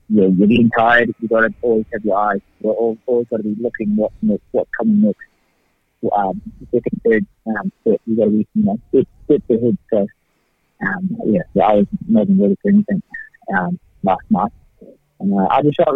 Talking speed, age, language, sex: 190 wpm, 30-49, English, male